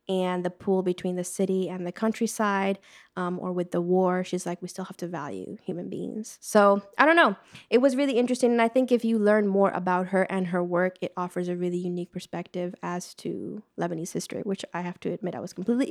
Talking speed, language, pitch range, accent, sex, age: 230 wpm, English, 180-205 Hz, American, female, 10-29